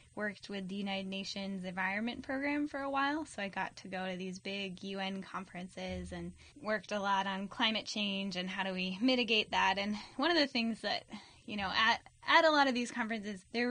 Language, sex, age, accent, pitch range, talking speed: English, female, 10-29, American, 190-230 Hz, 215 wpm